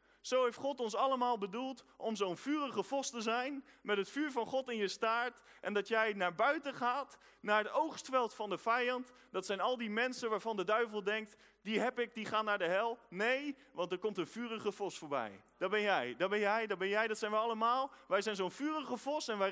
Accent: Dutch